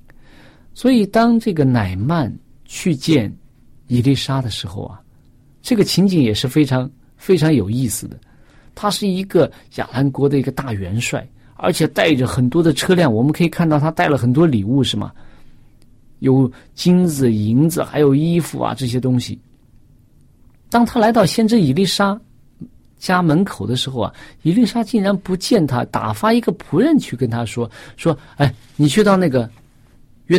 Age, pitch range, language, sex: 50-69, 125-175 Hz, Chinese, male